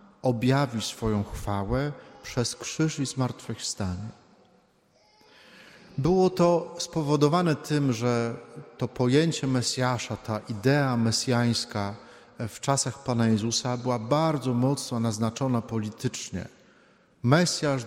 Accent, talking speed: native, 95 wpm